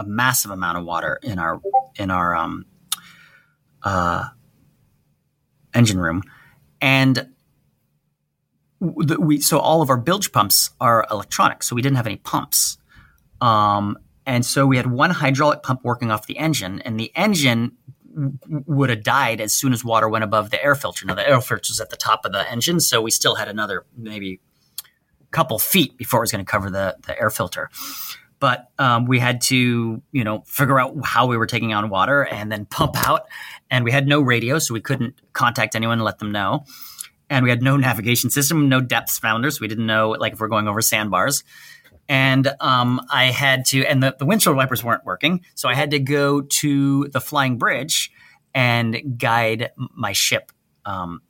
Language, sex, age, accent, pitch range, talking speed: English, male, 30-49, American, 110-140 Hz, 190 wpm